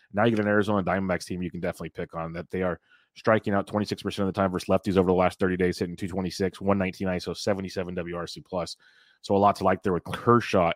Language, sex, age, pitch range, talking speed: English, male, 30-49, 90-105 Hz, 240 wpm